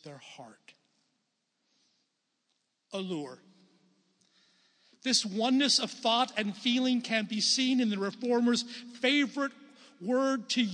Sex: male